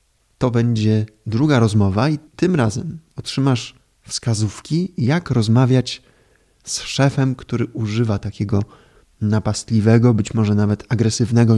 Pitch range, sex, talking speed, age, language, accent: 105-135 Hz, male, 110 wpm, 20-39, Polish, native